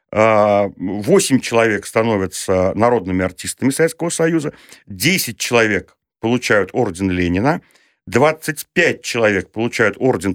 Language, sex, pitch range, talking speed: Russian, male, 95-140 Hz, 95 wpm